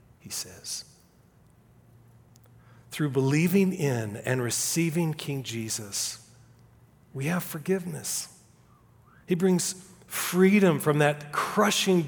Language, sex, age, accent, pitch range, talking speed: English, male, 40-59, American, 120-165 Hz, 90 wpm